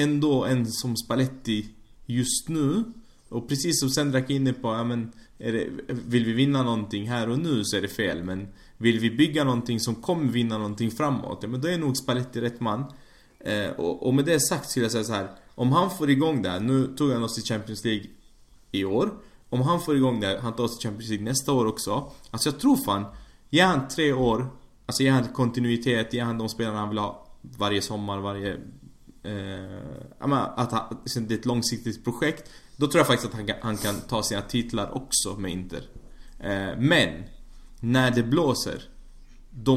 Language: Swedish